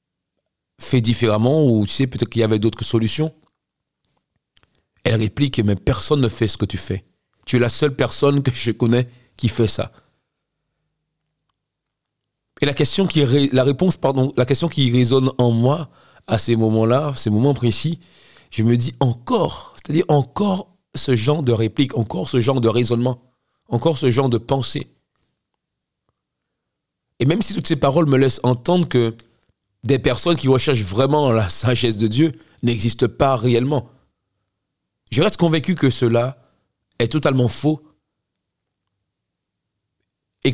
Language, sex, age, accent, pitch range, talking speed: French, male, 40-59, French, 115-150 Hz, 150 wpm